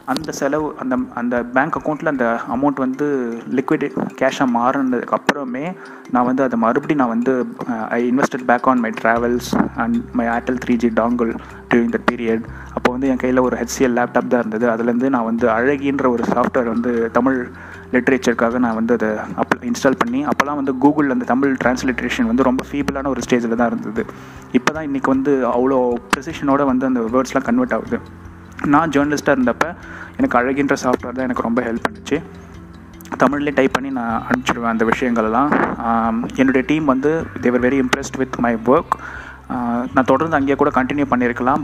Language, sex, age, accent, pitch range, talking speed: Tamil, male, 30-49, native, 115-135 Hz, 160 wpm